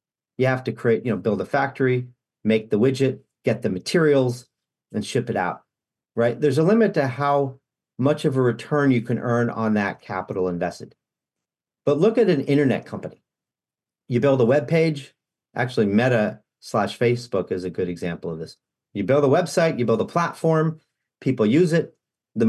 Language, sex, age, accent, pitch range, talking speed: English, male, 40-59, American, 110-145 Hz, 185 wpm